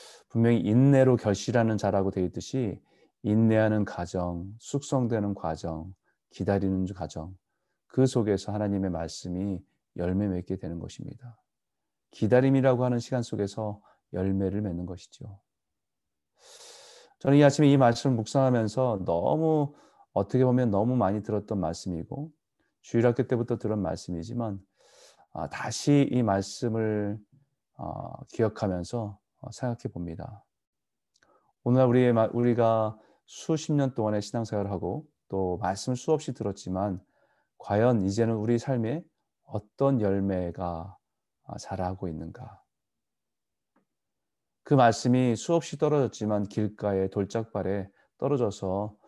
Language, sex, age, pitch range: Korean, male, 30-49, 95-125 Hz